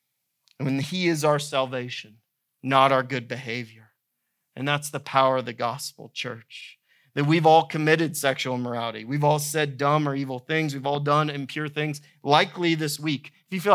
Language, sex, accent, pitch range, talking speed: English, male, American, 125-150 Hz, 185 wpm